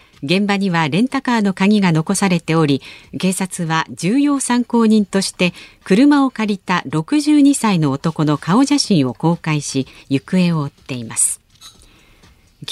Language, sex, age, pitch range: Japanese, female, 50-69, 145-230 Hz